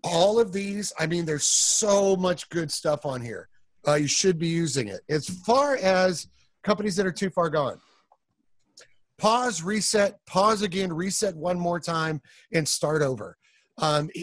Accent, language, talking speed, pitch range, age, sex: American, English, 165 wpm, 150-200 Hz, 40-59, male